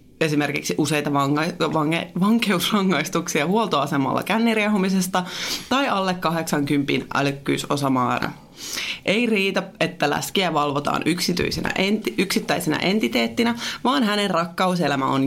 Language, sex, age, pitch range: Finnish, female, 30-49, 150-200 Hz